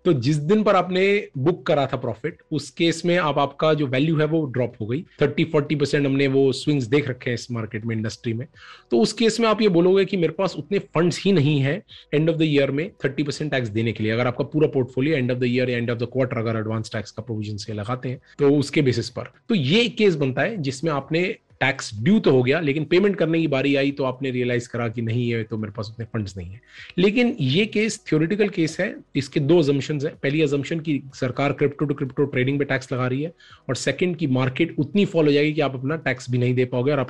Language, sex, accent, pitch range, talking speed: Hindi, male, native, 130-170 Hz, 175 wpm